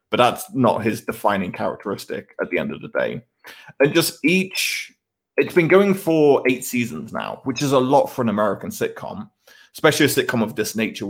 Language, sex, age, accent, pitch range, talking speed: English, male, 20-39, British, 110-140 Hz, 195 wpm